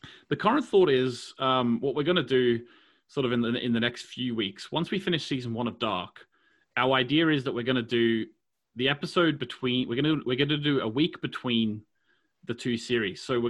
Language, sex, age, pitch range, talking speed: English, male, 30-49, 120-155 Hz, 230 wpm